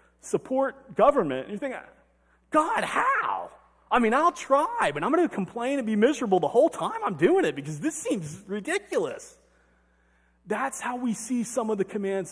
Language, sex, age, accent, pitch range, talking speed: English, male, 40-59, American, 185-250 Hz, 180 wpm